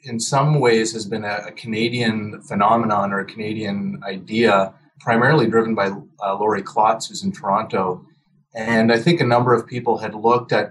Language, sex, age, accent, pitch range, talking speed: English, male, 30-49, American, 110-145 Hz, 175 wpm